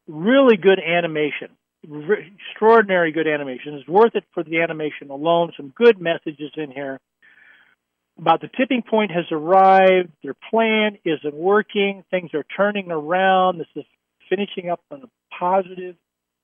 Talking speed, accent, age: 140 wpm, American, 50-69